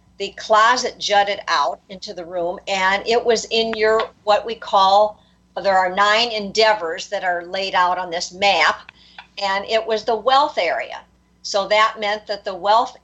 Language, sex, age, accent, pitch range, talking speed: English, female, 50-69, American, 195-220 Hz, 175 wpm